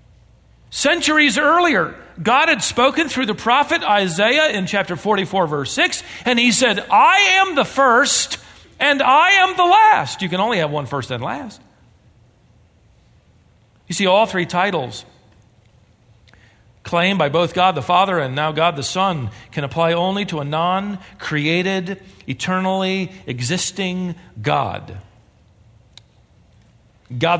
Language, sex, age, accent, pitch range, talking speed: English, male, 40-59, American, 135-225 Hz, 135 wpm